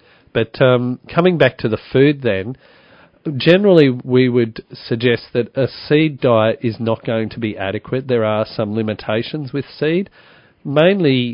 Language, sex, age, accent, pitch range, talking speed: English, male, 40-59, Australian, 110-130 Hz, 155 wpm